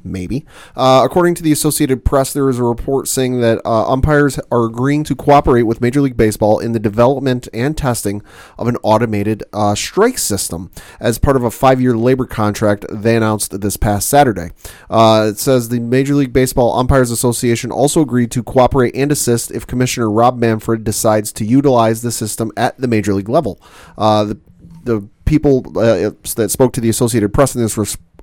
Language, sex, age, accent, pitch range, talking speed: English, male, 30-49, American, 110-130 Hz, 190 wpm